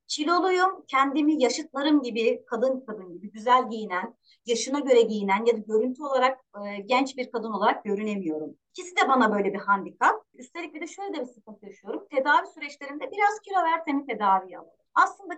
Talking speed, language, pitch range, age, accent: 170 wpm, Turkish, 210-310 Hz, 30-49, native